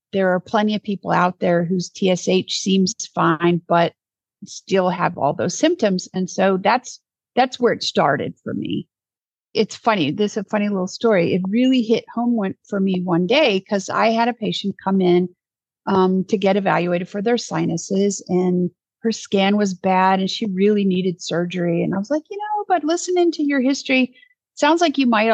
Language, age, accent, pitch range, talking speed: English, 50-69, American, 180-250 Hz, 190 wpm